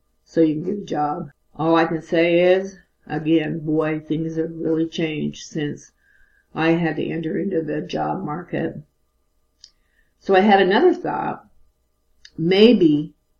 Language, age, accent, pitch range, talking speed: English, 50-69, American, 150-175 Hz, 145 wpm